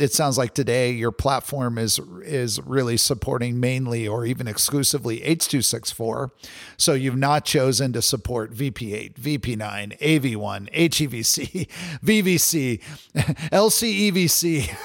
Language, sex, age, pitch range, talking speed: English, male, 50-69, 120-145 Hz, 110 wpm